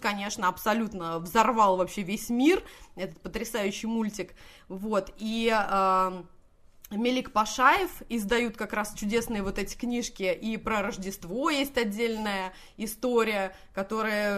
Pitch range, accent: 205-255 Hz, native